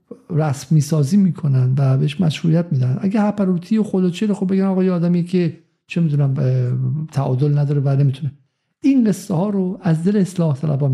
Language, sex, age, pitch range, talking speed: Persian, male, 50-69, 135-175 Hz, 175 wpm